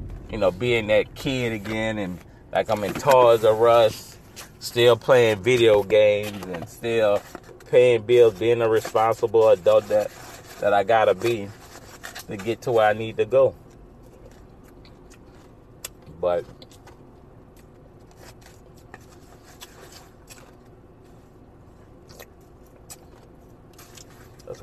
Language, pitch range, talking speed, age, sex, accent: English, 105-125 Hz, 95 wpm, 30-49, male, American